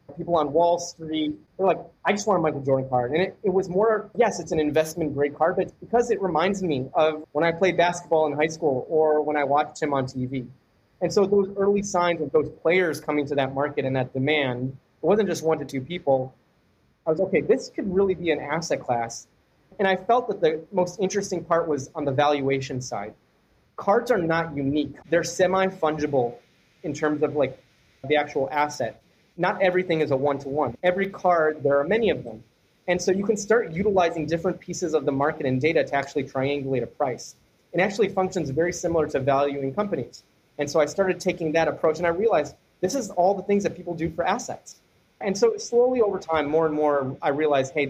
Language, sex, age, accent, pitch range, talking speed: English, male, 30-49, American, 145-180 Hz, 215 wpm